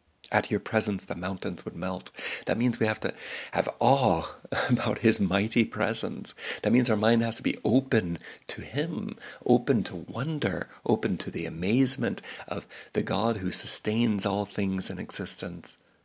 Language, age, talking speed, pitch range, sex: English, 60-79, 165 wpm, 100-120 Hz, male